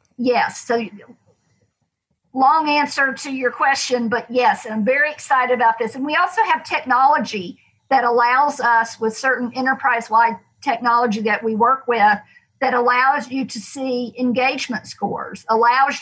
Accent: American